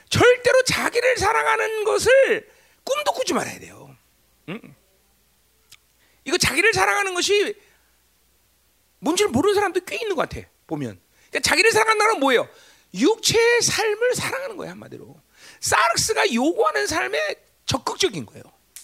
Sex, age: male, 40-59